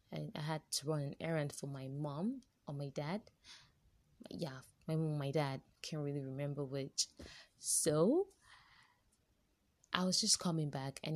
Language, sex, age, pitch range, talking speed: English, female, 20-39, 140-170 Hz, 155 wpm